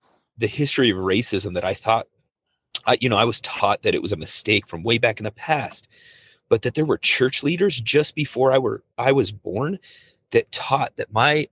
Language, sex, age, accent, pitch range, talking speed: English, male, 30-49, American, 105-135 Hz, 215 wpm